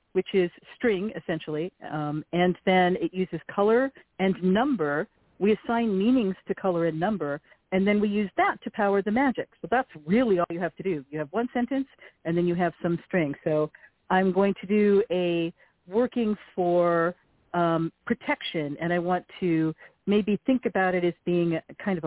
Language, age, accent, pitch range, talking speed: English, 50-69, American, 165-200 Hz, 185 wpm